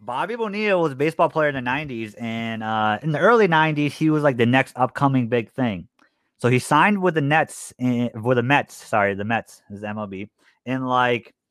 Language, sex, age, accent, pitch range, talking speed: English, male, 30-49, American, 115-145 Hz, 225 wpm